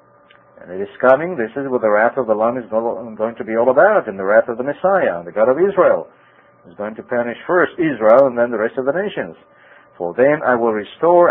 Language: English